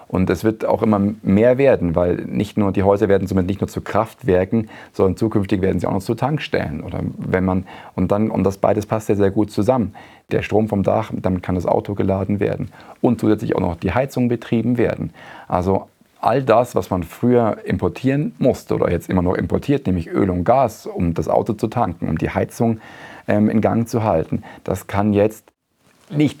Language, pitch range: German, 95-110 Hz